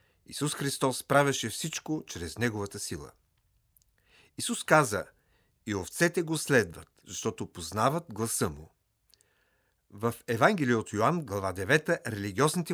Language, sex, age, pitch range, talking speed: Bulgarian, male, 50-69, 100-140 Hz, 115 wpm